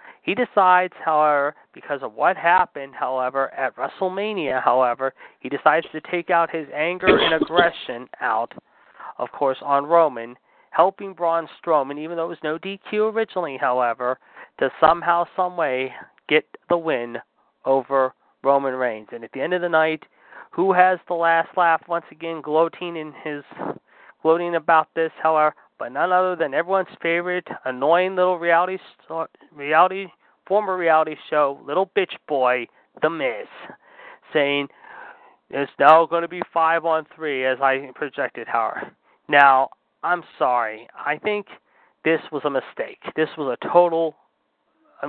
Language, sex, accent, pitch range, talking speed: English, male, American, 140-180 Hz, 150 wpm